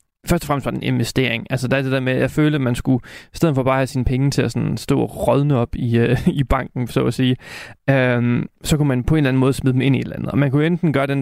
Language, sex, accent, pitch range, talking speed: Danish, male, native, 125-145 Hz, 325 wpm